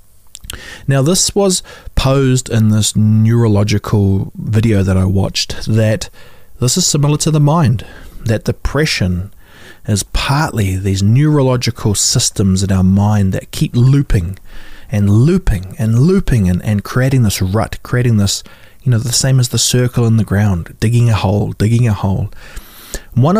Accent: Australian